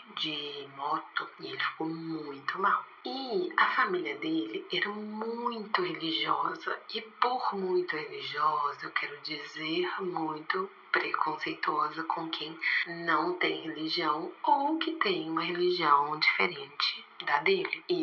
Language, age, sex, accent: Portuguese, 30-49, female, Brazilian